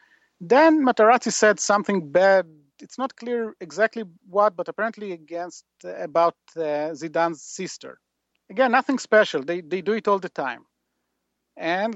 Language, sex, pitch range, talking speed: English, male, 165-225 Hz, 140 wpm